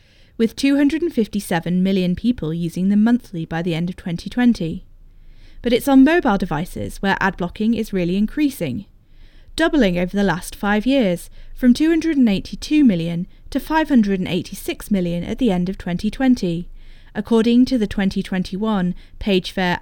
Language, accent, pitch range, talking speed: English, British, 170-225 Hz, 135 wpm